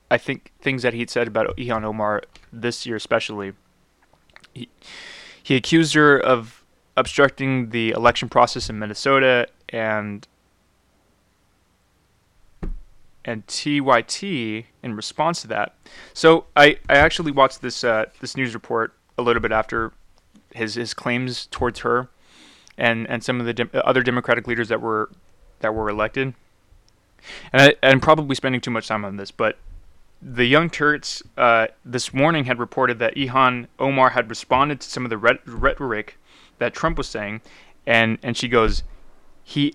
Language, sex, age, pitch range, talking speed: English, male, 20-39, 110-135 Hz, 150 wpm